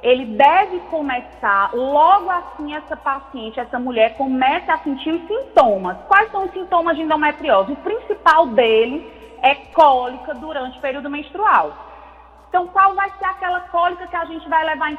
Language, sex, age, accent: Portuguese, female, 20-39, Brazilian